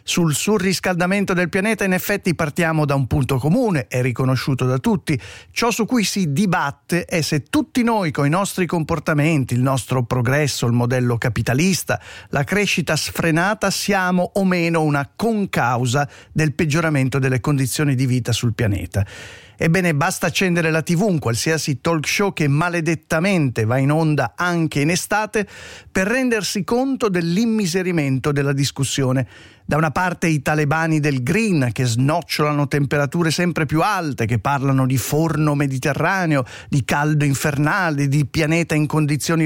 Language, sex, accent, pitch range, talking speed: Italian, male, native, 140-185 Hz, 150 wpm